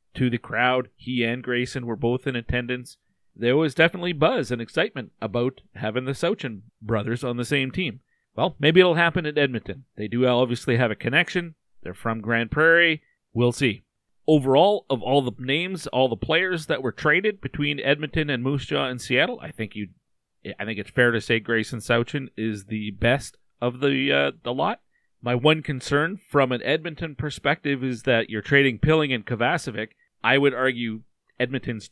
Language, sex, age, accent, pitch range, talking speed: English, male, 40-59, American, 115-145 Hz, 185 wpm